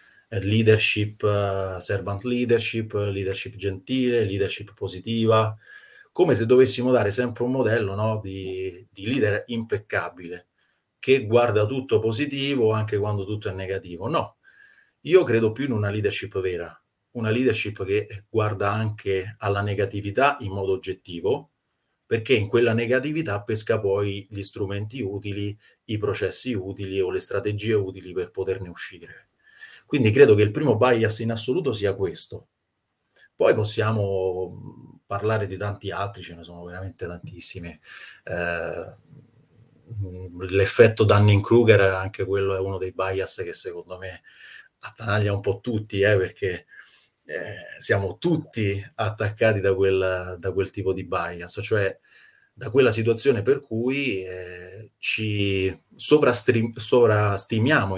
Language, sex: Italian, male